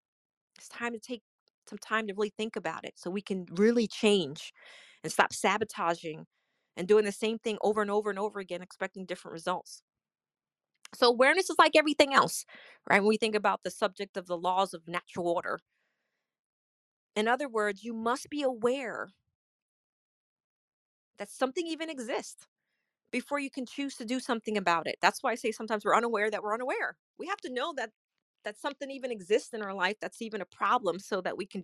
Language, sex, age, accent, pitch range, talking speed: English, female, 30-49, American, 195-255 Hz, 195 wpm